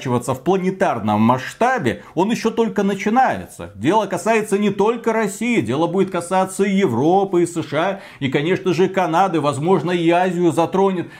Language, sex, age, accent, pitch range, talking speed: Russian, male, 40-59, native, 140-185 Hz, 145 wpm